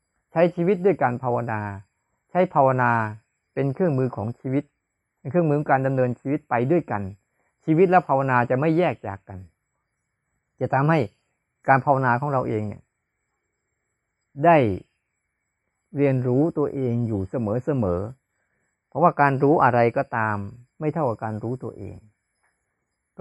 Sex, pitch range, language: male, 110-145 Hz, Thai